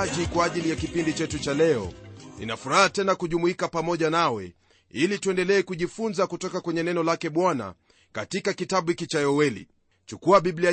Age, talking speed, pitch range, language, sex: 30-49, 145 wpm, 155-195 Hz, Swahili, male